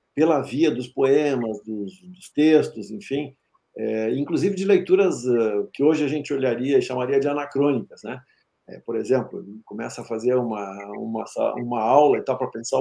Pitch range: 120-155 Hz